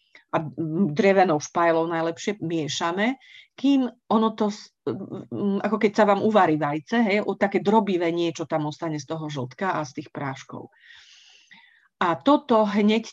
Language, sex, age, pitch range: Slovak, female, 40-59, 165-215 Hz